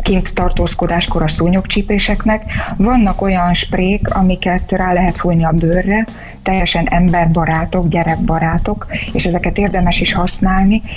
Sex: female